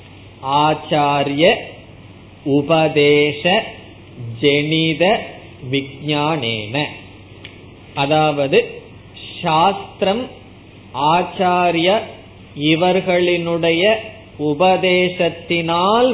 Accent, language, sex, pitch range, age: native, Tamil, male, 135-180 Hz, 20-39